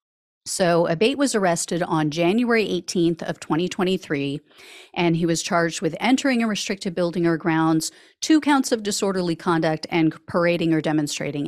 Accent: American